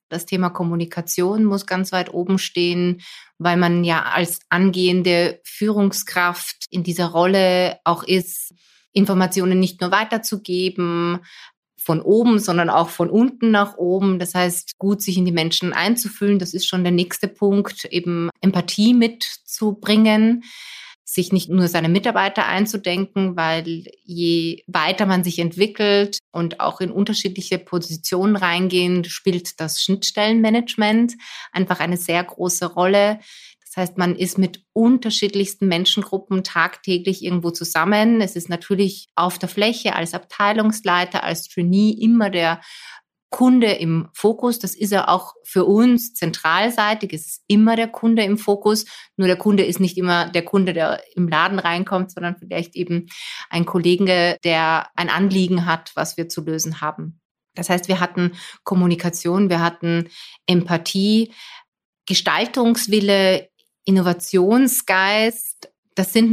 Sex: female